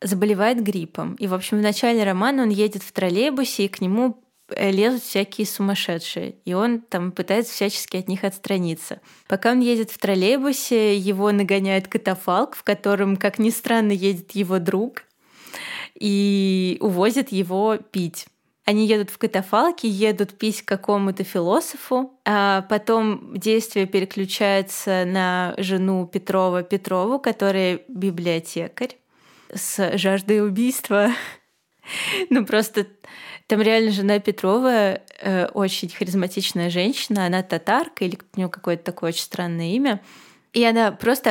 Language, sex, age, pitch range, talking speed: Russian, female, 20-39, 190-225 Hz, 130 wpm